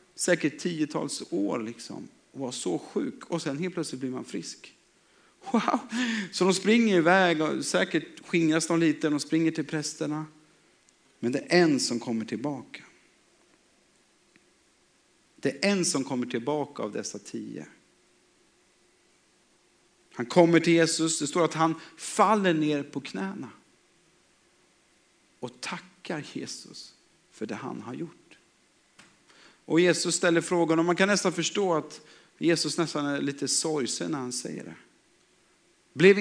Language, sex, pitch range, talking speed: Swedish, male, 145-180 Hz, 140 wpm